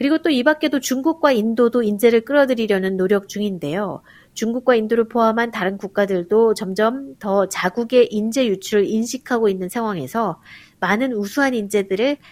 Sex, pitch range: female, 195-245 Hz